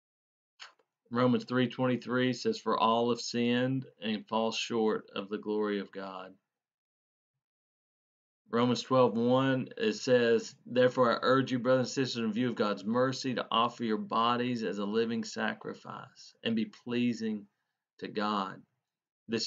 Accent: American